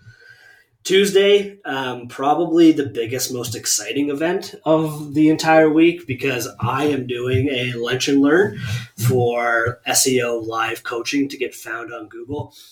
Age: 30-49